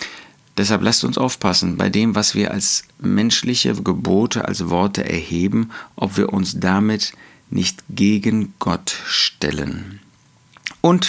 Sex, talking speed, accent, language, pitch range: male, 125 wpm, German, German, 100-130 Hz